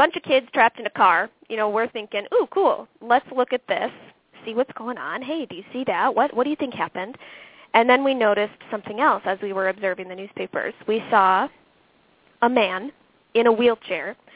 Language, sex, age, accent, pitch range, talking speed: English, female, 20-39, American, 205-270 Hz, 215 wpm